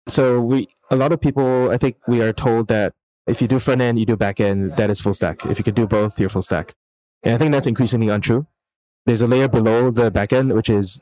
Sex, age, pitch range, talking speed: male, 20-39, 95-115 Hz, 235 wpm